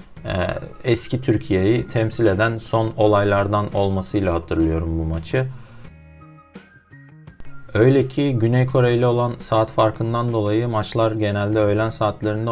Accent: native